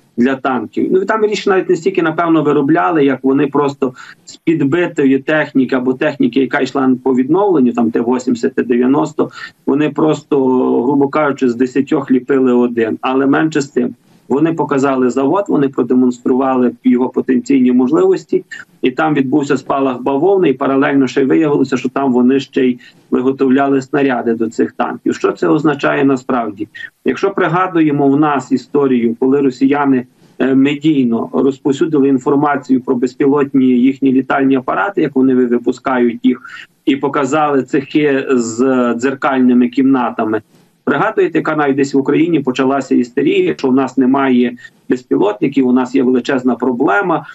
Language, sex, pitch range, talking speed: Ukrainian, male, 130-150 Hz, 140 wpm